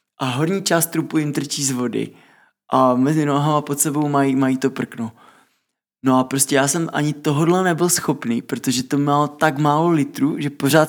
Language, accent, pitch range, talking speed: Czech, native, 120-140 Hz, 185 wpm